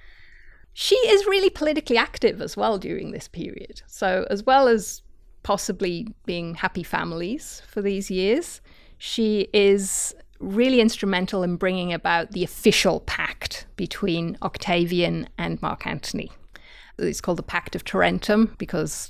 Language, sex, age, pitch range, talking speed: English, female, 30-49, 165-215 Hz, 135 wpm